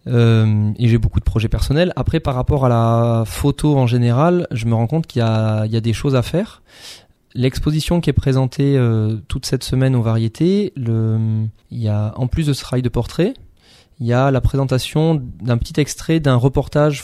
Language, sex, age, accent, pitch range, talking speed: French, male, 20-39, French, 110-130 Hz, 210 wpm